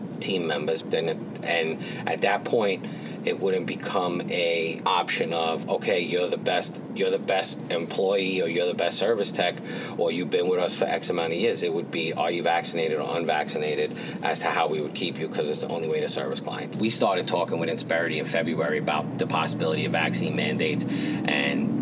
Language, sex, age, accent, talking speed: English, male, 30-49, American, 205 wpm